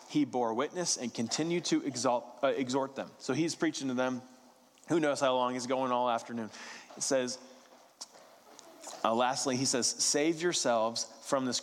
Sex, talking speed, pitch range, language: male, 170 wpm, 110-135 Hz, English